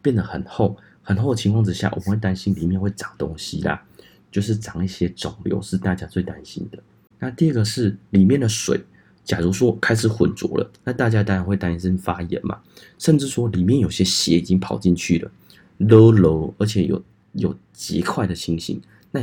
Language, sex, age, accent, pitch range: Chinese, male, 30-49, native, 90-110 Hz